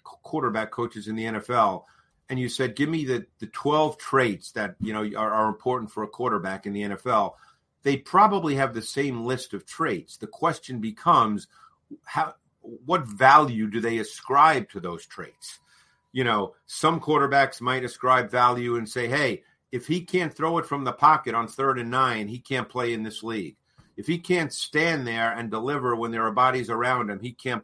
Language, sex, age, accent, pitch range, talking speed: English, male, 50-69, American, 110-135 Hz, 195 wpm